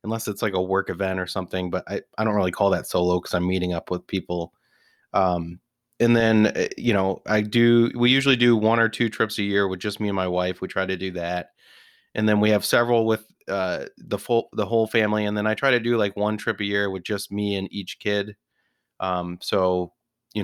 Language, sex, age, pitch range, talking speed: English, male, 30-49, 90-110 Hz, 240 wpm